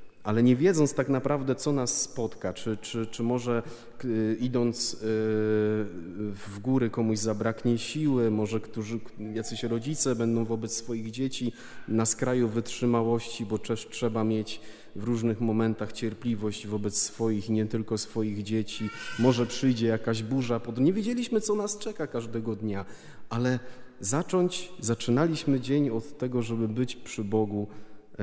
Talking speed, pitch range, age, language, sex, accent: 140 wpm, 105-120 Hz, 30-49, Polish, male, native